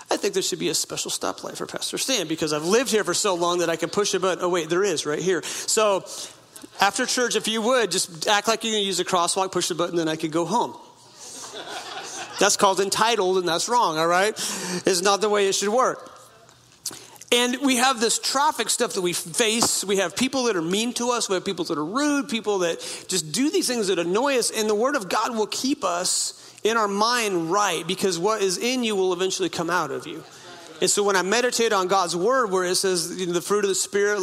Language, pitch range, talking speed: English, 180-225 Hz, 245 wpm